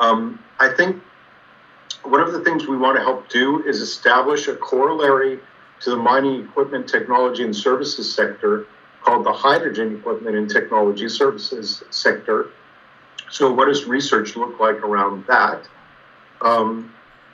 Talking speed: 140 wpm